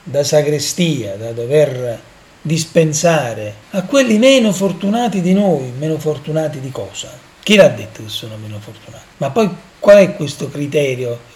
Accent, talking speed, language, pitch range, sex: native, 150 wpm, Italian, 140-180 Hz, male